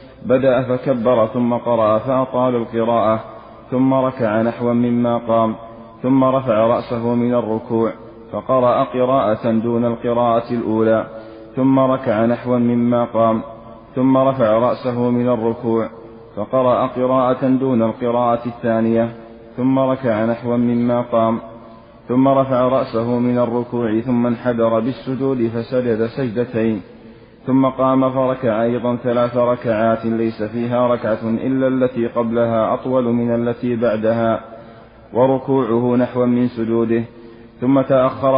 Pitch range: 115-125 Hz